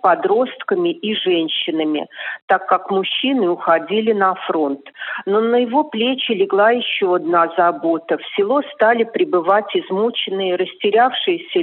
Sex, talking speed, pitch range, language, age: female, 120 wpm, 190-305 Hz, Russian, 40-59